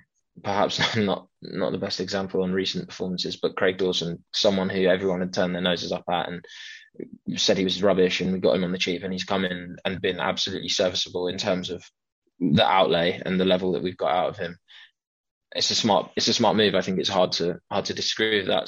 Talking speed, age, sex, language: 235 wpm, 20-39, male, English